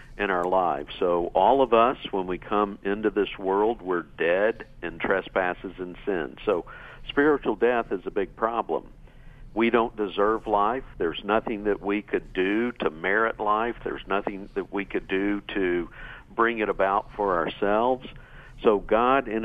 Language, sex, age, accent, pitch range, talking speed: English, male, 50-69, American, 95-120 Hz, 165 wpm